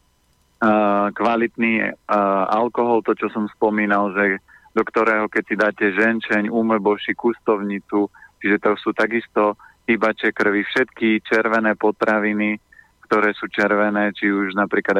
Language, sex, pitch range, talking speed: Slovak, male, 105-115 Hz, 130 wpm